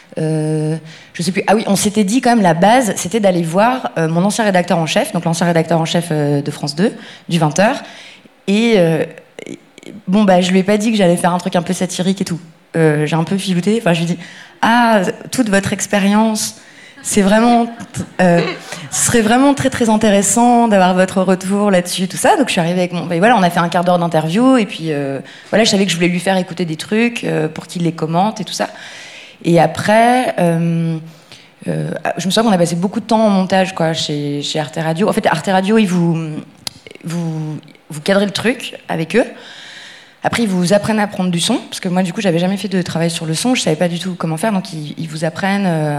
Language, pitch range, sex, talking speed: French, 165-210 Hz, female, 245 wpm